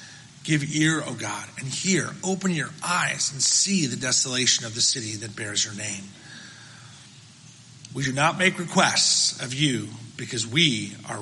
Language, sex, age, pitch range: English, male, 40-59, 120-150 Hz